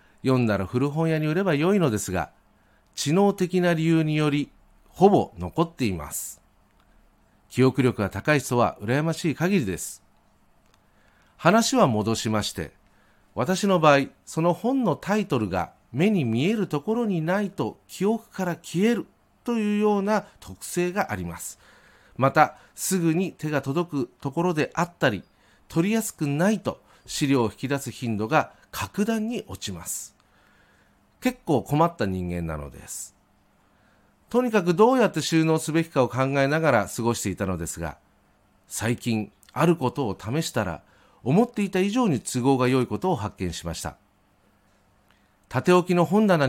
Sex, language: male, Japanese